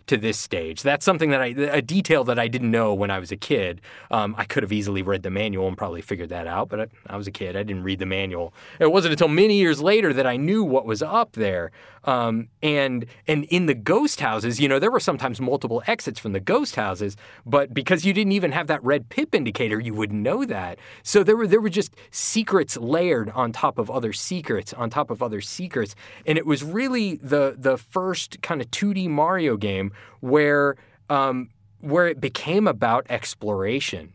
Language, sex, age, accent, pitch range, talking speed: English, male, 20-39, American, 110-155 Hz, 220 wpm